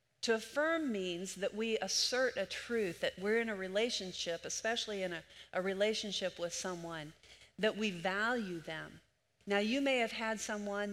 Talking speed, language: 165 wpm, English